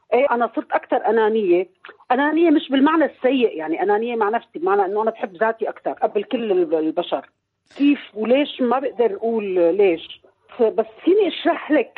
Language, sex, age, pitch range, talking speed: Arabic, female, 40-59, 205-280 Hz, 160 wpm